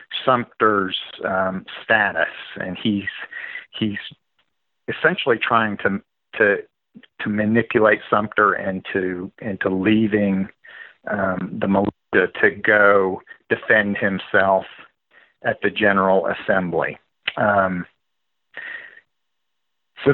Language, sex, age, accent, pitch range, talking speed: English, male, 40-59, American, 110-150 Hz, 85 wpm